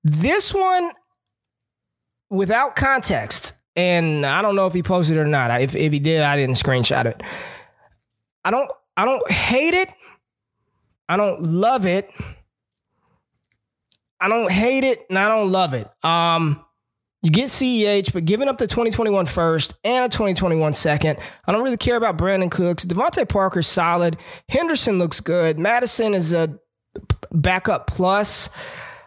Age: 20-39